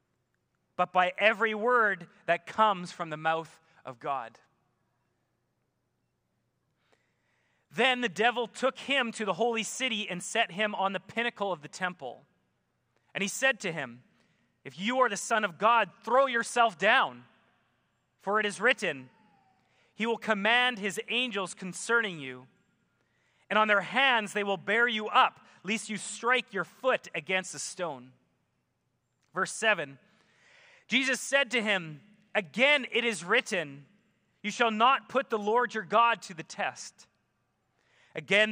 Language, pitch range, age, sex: English, 160-225 Hz, 30-49, male